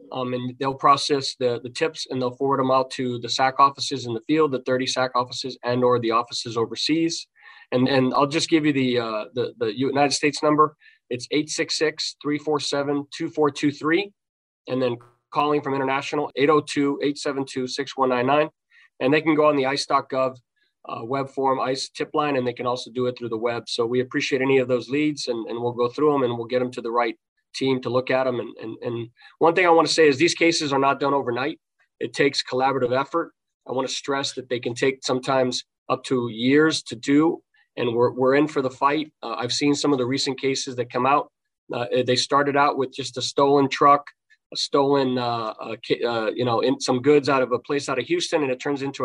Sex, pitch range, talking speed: male, 125-145 Hz, 220 wpm